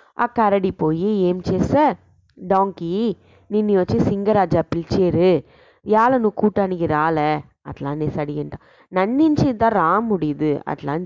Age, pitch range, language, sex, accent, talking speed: 20-39, 170-215 Hz, English, female, Indian, 135 wpm